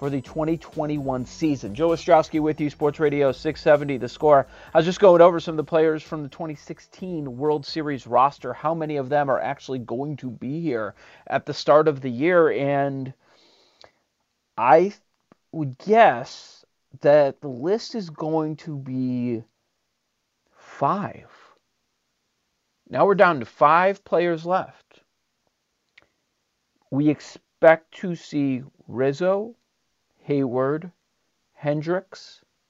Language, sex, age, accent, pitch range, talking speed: English, male, 40-59, American, 130-160 Hz, 130 wpm